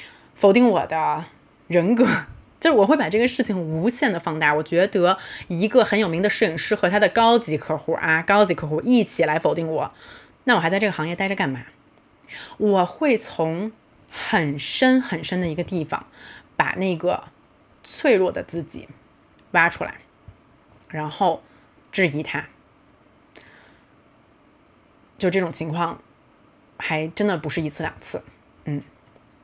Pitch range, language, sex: 165-220 Hz, Chinese, female